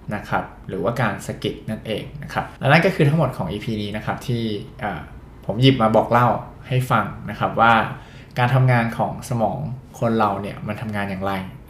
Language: Thai